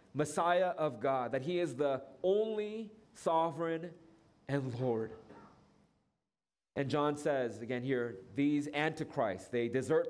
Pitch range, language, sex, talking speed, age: 125-170 Hz, English, male, 120 wpm, 30-49